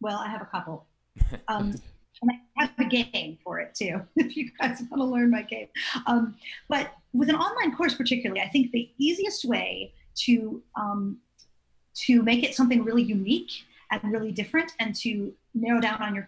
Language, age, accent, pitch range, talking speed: English, 30-49, American, 190-250 Hz, 190 wpm